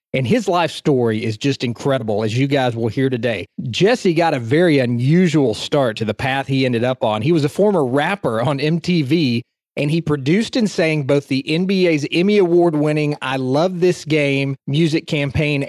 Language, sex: English, male